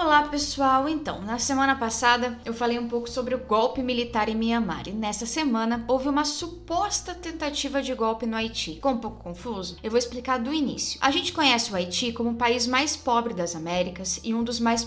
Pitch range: 225-275 Hz